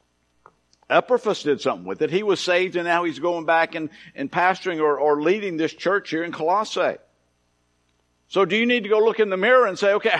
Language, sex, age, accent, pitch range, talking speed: English, male, 50-69, American, 135-215 Hz, 220 wpm